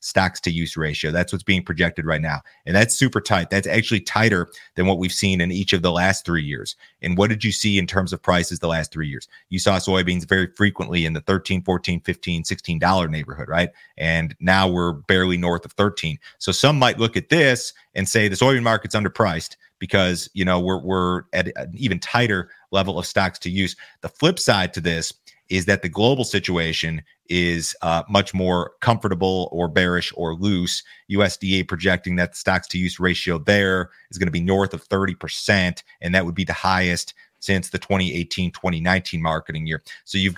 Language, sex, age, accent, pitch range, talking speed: English, male, 30-49, American, 85-100 Hz, 200 wpm